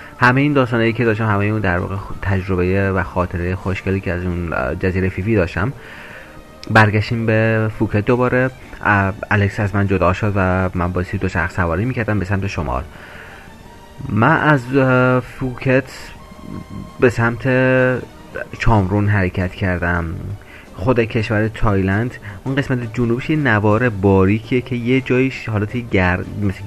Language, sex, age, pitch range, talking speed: Persian, male, 30-49, 90-110 Hz, 135 wpm